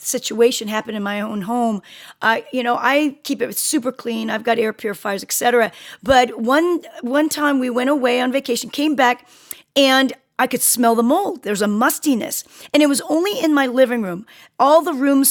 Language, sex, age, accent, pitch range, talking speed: English, female, 40-59, American, 230-280 Hz, 200 wpm